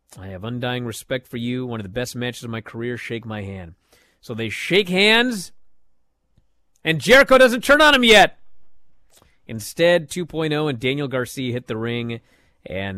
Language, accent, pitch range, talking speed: English, American, 115-170 Hz, 170 wpm